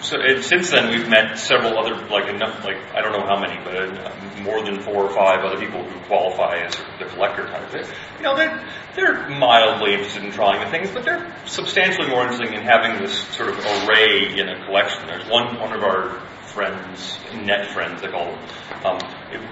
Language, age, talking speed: English, 40-59, 205 wpm